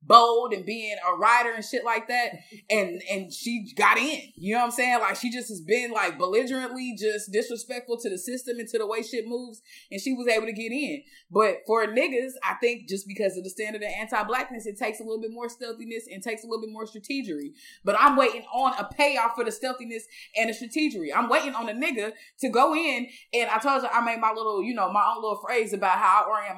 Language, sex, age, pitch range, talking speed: English, female, 20-39, 215-260 Hz, 245 wpm